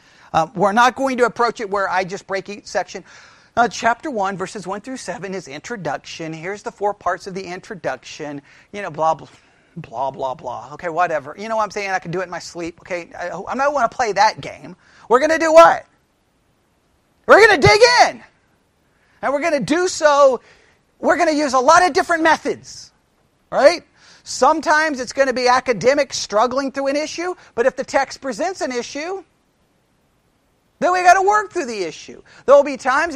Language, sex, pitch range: English, male, 190-285 Hz